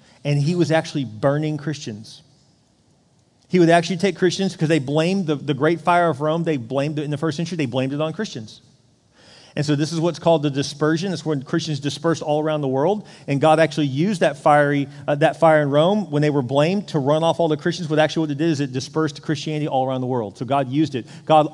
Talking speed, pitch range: 240 wpm, 150-210 Hz